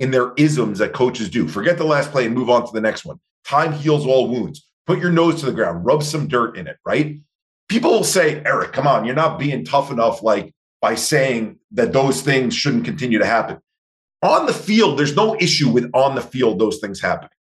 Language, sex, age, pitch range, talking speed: English, male, 40-59, 125-165 Hz, 230 wpm